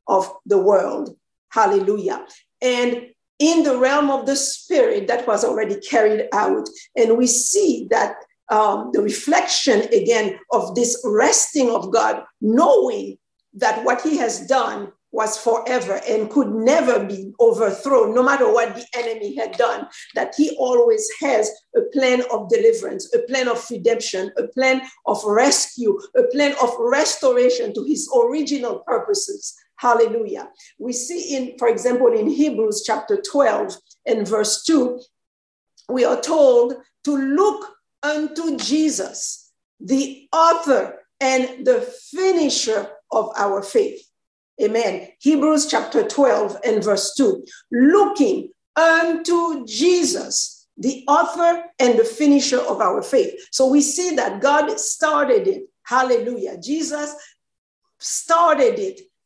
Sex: female